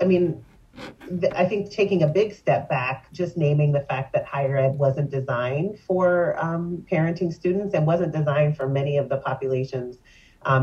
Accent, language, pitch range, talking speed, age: American, English, 130-150 Hz, 180 wpm, 30-49